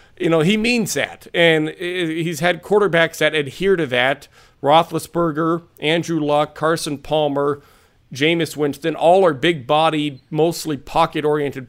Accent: American